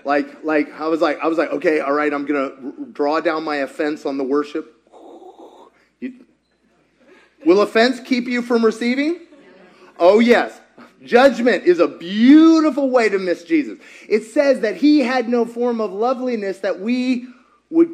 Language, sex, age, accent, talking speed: English, male, 30-49, American, 170 wpm